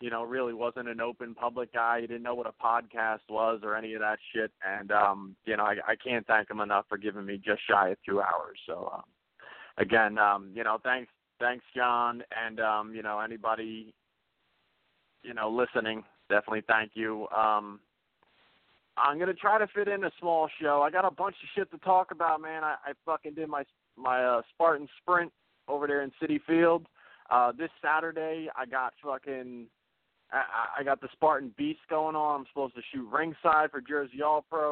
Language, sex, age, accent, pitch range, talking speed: English, male, 20-39, American, 115-150 Hz, 200 wpm